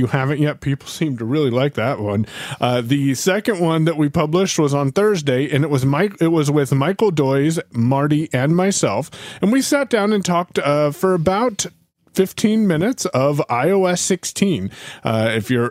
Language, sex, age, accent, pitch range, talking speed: English, male, 30-49, American, 130-165 Hz, 185 wpm